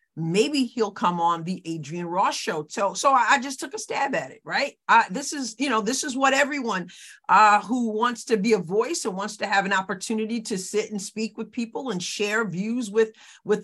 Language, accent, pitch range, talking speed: English, American, 190-260 Hz, 225 wpm